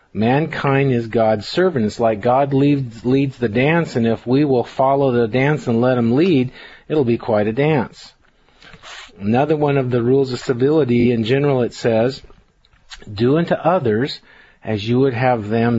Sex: male